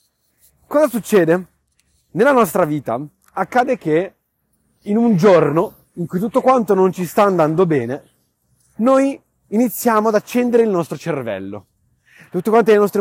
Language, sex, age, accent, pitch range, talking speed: Italian, male, 30-49, native, 155-230 Hz, 135 wpm